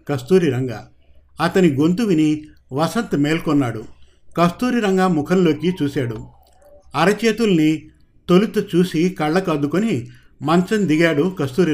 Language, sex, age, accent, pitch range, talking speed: Telugu, male, 50-69, native, 140-185 Hz, 90 wpm